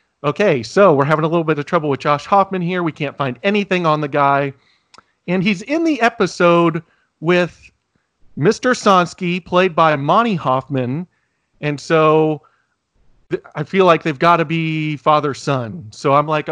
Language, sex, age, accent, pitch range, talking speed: English, male, 40-59, American, 135-165 Hz, 165 wpm